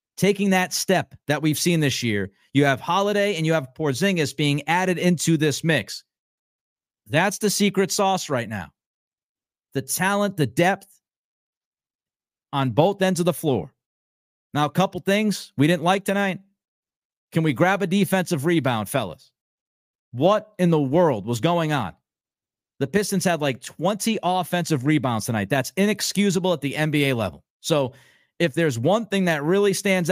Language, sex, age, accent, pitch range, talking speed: English, male, 40-59, American, 145-190 Hz, 160 wpm